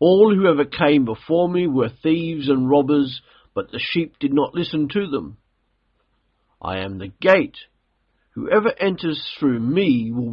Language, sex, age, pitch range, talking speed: English, male, 50-69, 115-165 Hz, 155 wpm